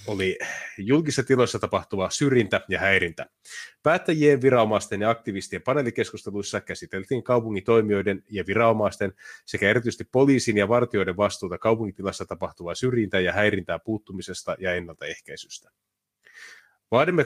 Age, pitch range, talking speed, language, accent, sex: 30-49, 95-125 Hz, 110 wpm, Finnish, native, male